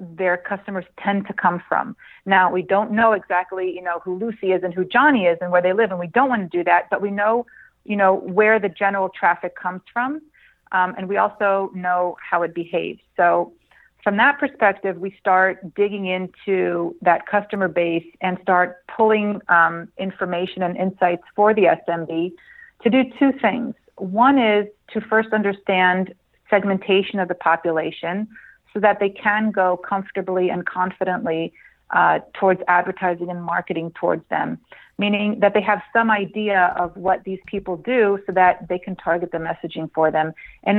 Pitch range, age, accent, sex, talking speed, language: 180-210 Hz, 40-59, American, female, 175 wpm, English